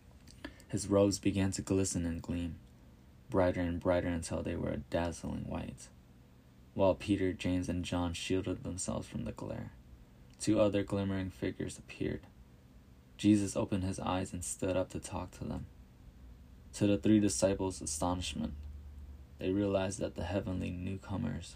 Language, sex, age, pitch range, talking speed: English, male, 20-39, 70-95 Hz, 150 wpm